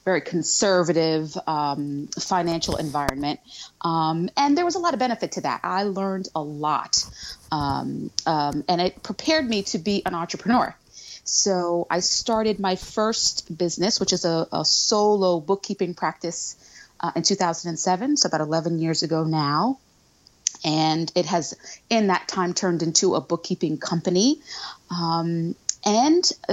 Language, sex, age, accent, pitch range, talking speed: English, female, 30-49, American, 170-210 Hz, 145 wpm